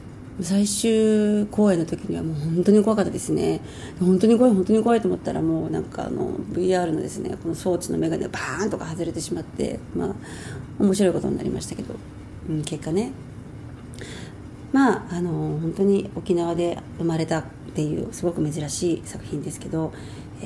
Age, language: 40-59, Japanese